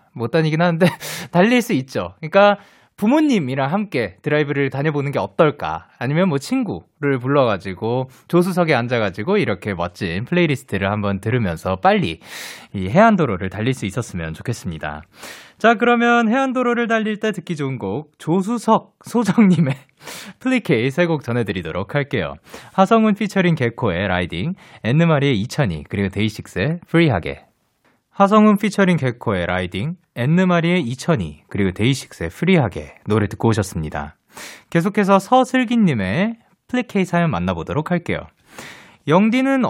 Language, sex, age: Korean, male, 20-39